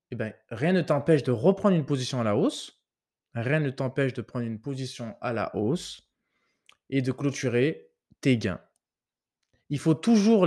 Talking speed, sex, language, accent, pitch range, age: 170 wpm, male, French, French, 125-165 Hz, 20-39